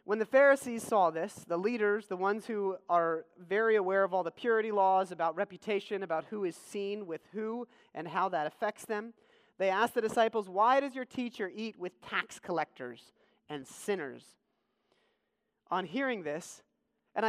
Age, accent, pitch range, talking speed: 30-49, American, 160-220 Hz, 170 wpm